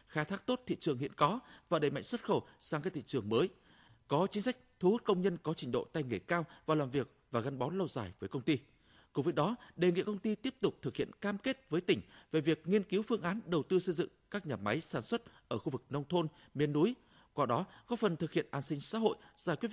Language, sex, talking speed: Vietnamese, male, 275 wpm